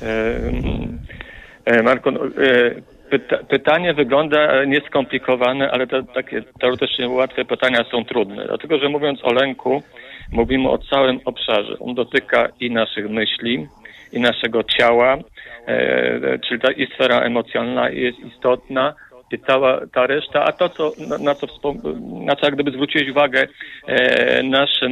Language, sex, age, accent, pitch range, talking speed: Polish, male, 50-69, native, 120-145 Hz, 115 wpm